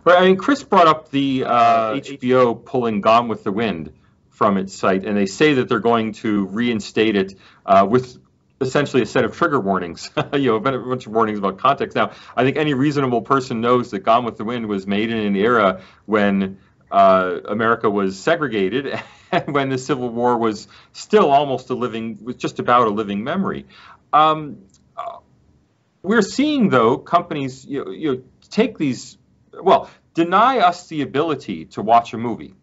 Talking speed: 185 wpm